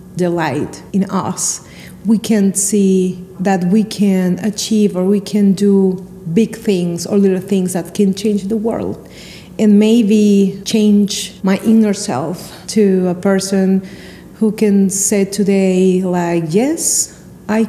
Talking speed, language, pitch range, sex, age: 135 wpm, English, 185-210 Hz, female, 40-59